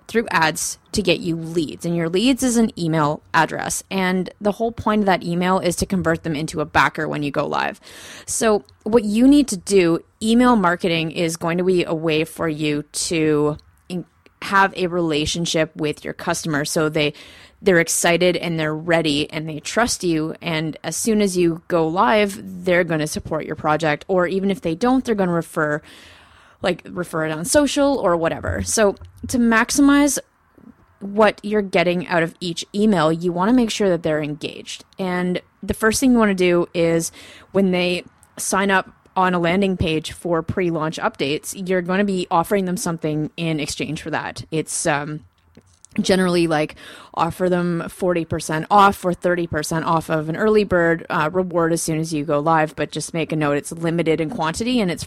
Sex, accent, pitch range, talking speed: female, American, 155-195 Hz, 195 wpm